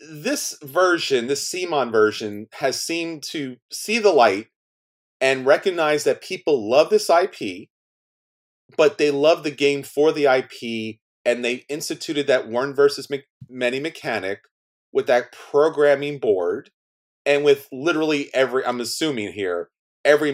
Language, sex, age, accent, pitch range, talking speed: English, male, 30-49, American, 115-175 Hz, 130 wpm